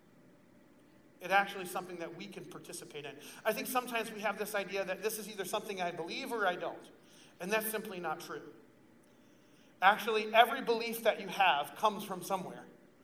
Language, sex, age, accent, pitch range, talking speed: English, male, 40-59, American, 205-245 Hz, 185 wpm